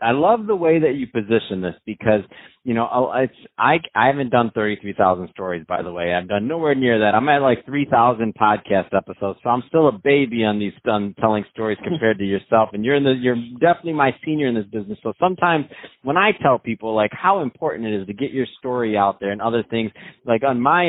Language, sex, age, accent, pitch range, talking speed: English, male, 30-49, American, 110-135 Hz, 235 wpm